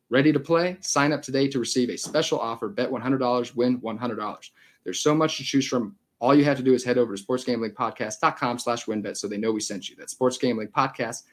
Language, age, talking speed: English, 30-49, 215 wpm